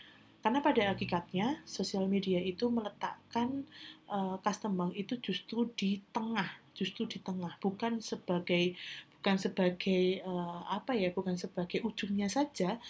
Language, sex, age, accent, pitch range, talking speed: Indonesian, female, 30-49, native, 180-210 Hz, 125 wpm